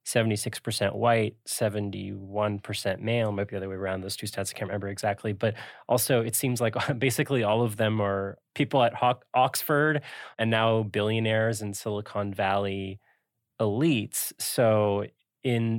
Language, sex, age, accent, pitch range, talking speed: English, male, 20-39, American, 100-120 Hz, 145 wpm